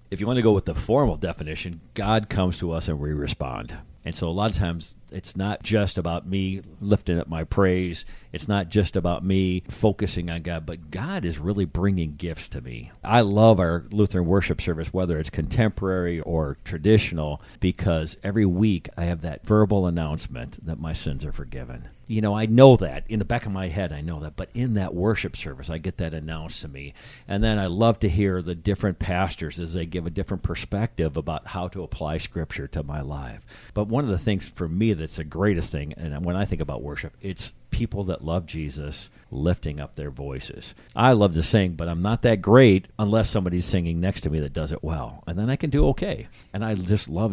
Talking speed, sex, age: 220 wpm, male, 50-69